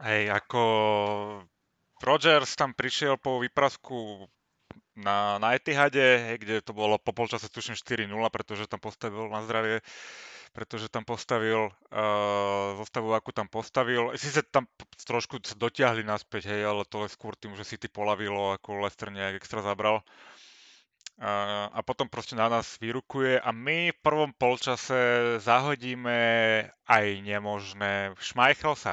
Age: 30-49